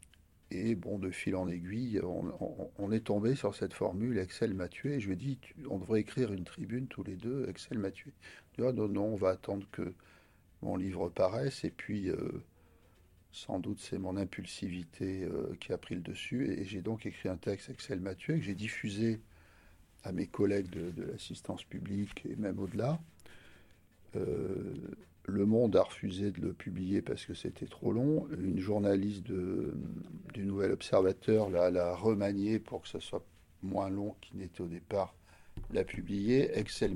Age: 50-69